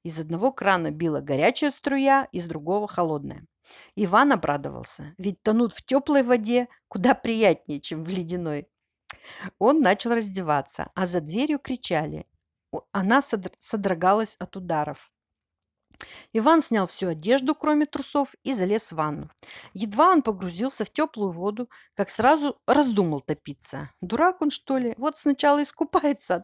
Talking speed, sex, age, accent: 135 wpm, female, 50-69, native